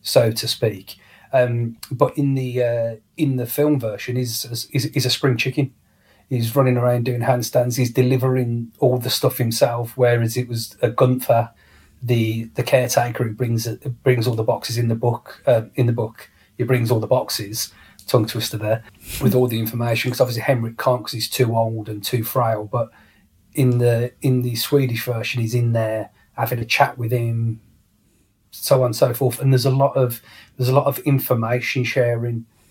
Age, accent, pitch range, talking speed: 30-49, British, 110-125 Hz, 190 wpm